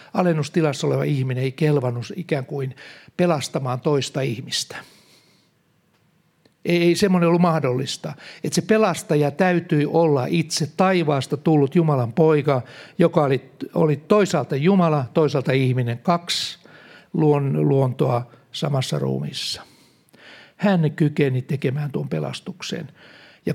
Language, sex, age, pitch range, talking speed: Finnish, male, 60-79, 140-170 Hz, 105 wpm